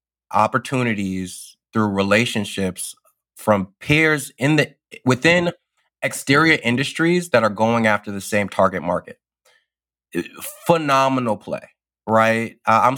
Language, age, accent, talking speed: English, 20-39, American, 105 wpm